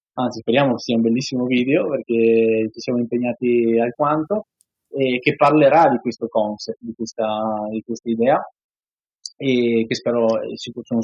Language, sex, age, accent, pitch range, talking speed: Italian, male, 20-39, native, 115-135 Hz, 145 wpm